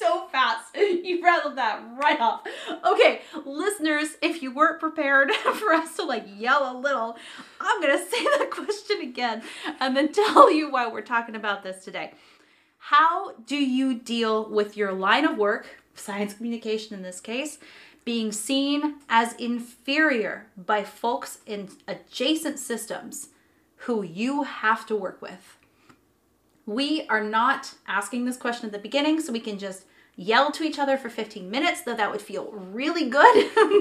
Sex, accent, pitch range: female, American, 215-300 Hz